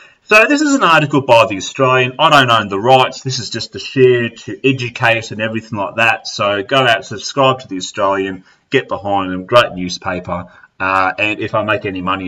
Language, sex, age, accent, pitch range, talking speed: English, male, 30-49, Australian, 100-145 Hz, 210 wpm